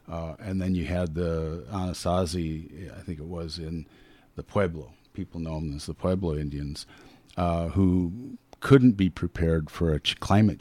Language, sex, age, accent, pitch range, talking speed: English, male, 50-69, American, 85-100 Hz, 165 wpm